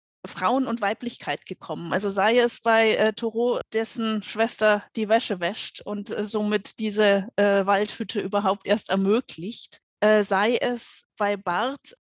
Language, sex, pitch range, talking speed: German, female, 200-230 Hz, 145 wpm